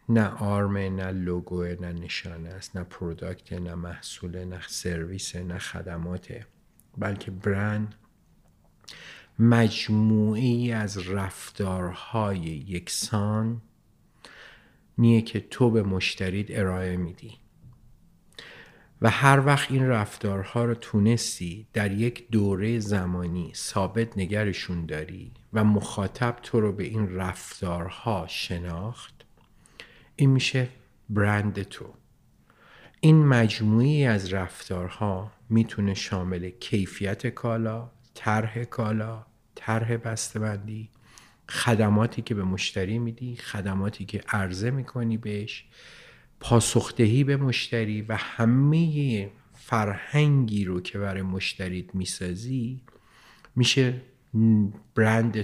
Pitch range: 95-115 Hz